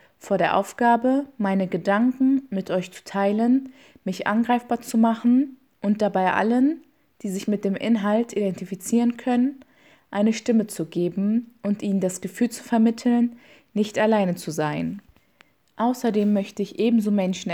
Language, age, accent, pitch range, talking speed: German, 20-39, German, 185-230 Hz, 145 wpm